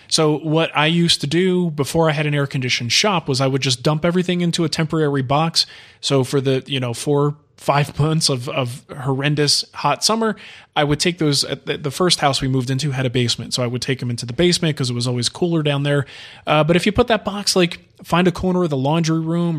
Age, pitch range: 20-39, 135-165 Hz